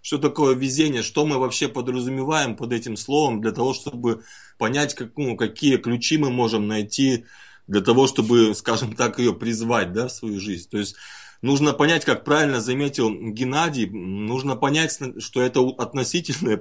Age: 30-49